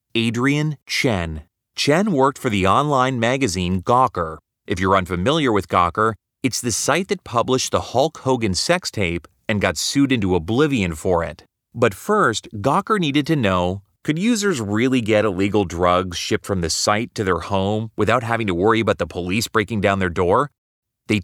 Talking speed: 175 wpm